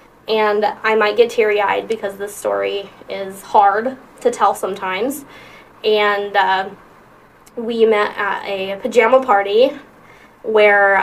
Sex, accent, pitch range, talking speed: female, American, 195-220 Hz, 120 wpm